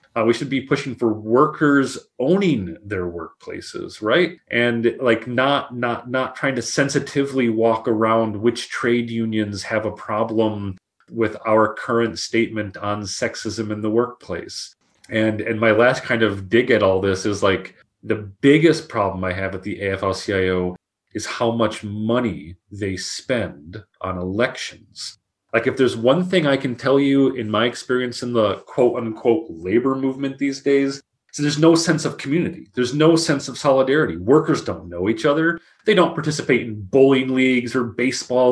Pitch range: 110-140 Hz